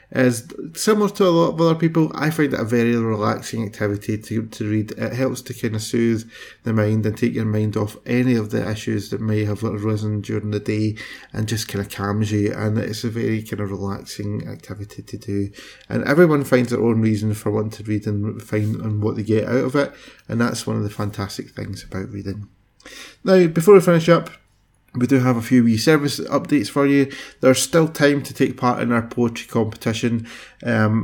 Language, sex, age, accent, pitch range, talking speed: English, male, 20-39, British, 105-130 Hz, 215 wpm